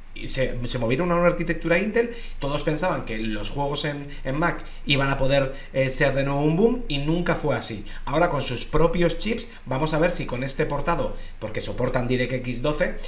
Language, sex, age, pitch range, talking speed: Spanish, male, 30-49, 120-170 Hz, 210 wpm